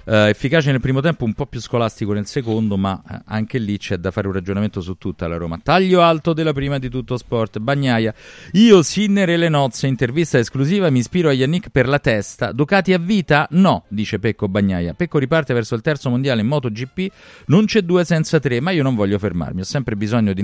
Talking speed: 210 wpm